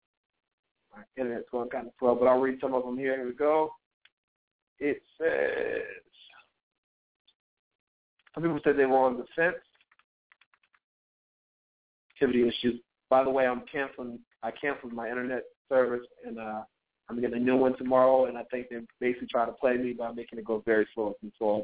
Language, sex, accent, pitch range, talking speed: English, male, American, 120-145 Hz, 175 wpm